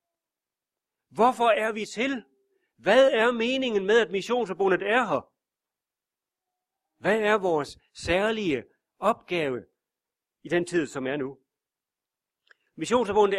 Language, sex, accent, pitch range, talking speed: Danish, male, native, 180-245 Hz, 110 wpm